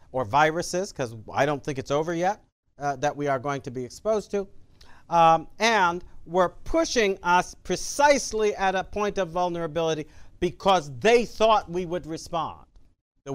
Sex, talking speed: male, 160 wpm